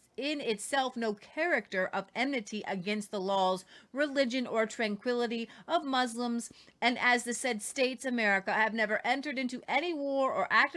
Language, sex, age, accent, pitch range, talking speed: English, female, 30-49, American, 205-260 Hz, 155 wpm